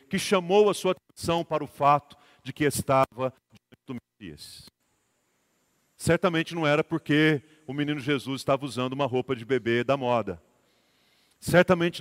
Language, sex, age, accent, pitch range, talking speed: Portuguese, male, 40-59, Brazilian, 130-165 Hz, 150 wpm